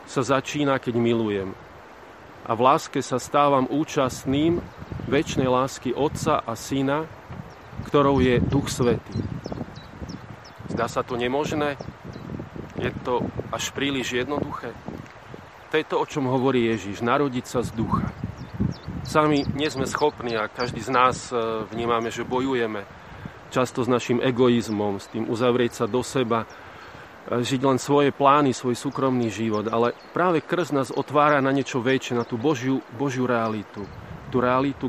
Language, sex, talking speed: Slovak, male, 140 wpm